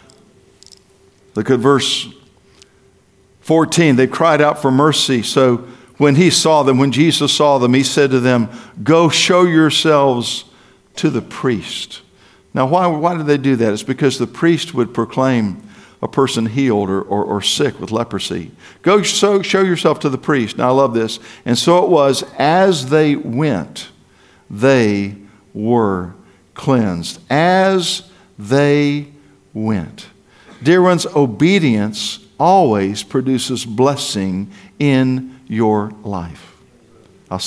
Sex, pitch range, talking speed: male, 120-175 Hz, 135 wpm